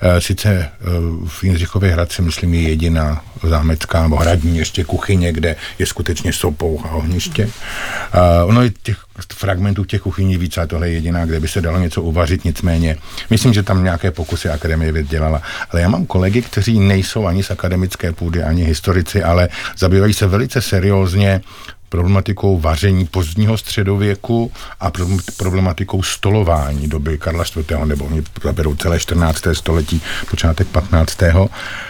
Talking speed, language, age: 145 wpm, Czech, 50-69